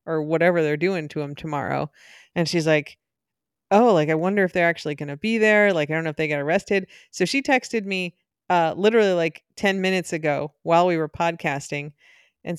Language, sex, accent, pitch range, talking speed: English, female, American, 170-215 Hz, 210 wpm